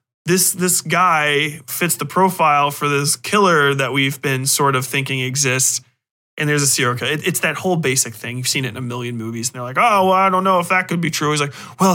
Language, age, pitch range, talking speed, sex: English, 30-49, 130-160 Hz, 245 wpm, male